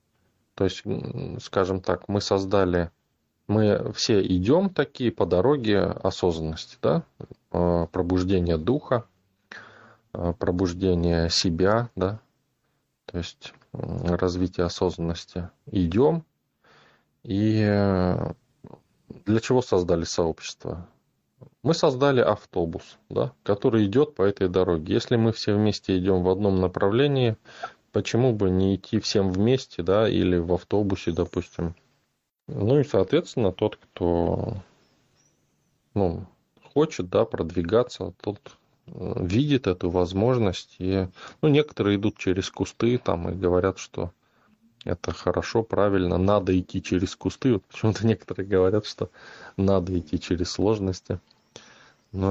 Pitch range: 90-110 Hz